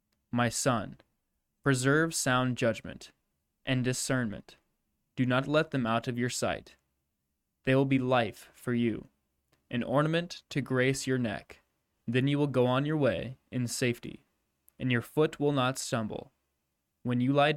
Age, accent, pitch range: 10-29, American, 115-135 Hz